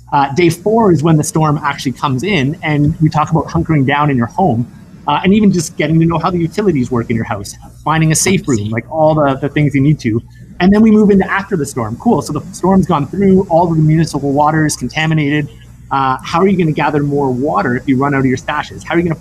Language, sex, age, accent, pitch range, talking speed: English, male, 30-49, American, 135-170 Hz, 270 wpm